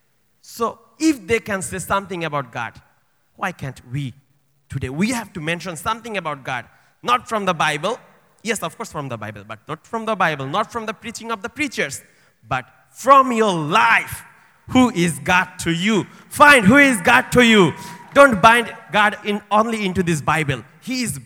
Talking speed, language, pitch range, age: 185 wpm, English, 130-200 Hz, 30-49